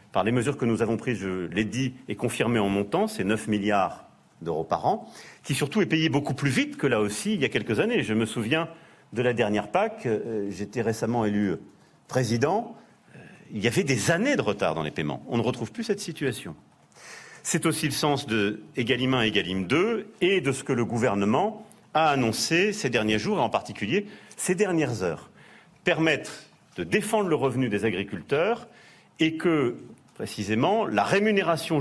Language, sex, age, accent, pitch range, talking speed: French, male, 40-59, French, 110-165 Hz, 190 wpm